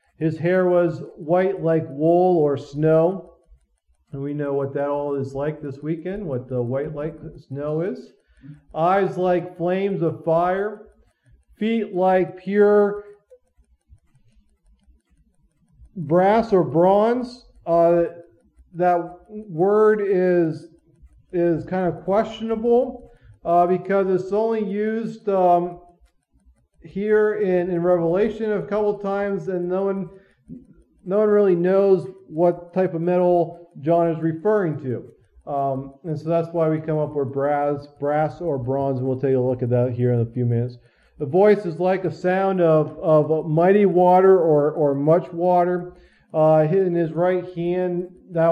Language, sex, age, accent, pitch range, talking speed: English, male, 40-59, American, 150-185 Hz, 145 wpm